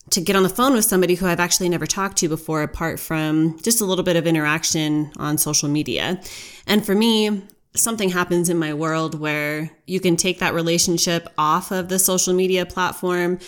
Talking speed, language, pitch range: 200 wpm, English, 155-180 Hz